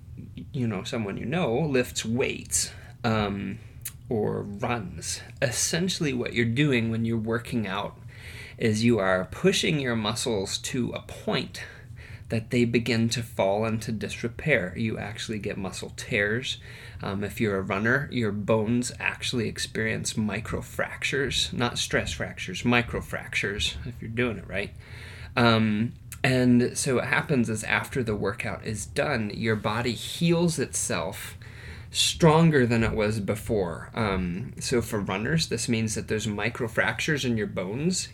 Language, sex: English, male